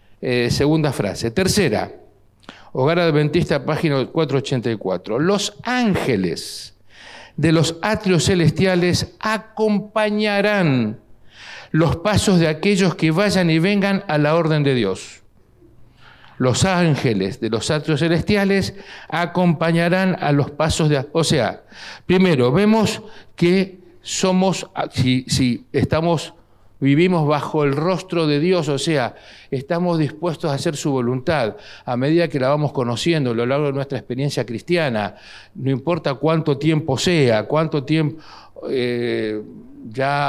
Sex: male